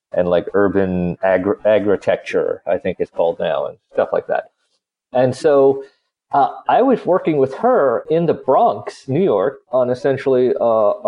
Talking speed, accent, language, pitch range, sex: 155 wpm, American, English, 105-160 Hz, male